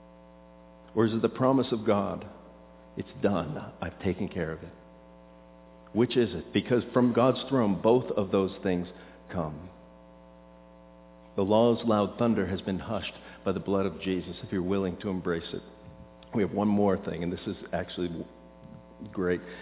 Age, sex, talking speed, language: 50-69, male, 165 wpm, English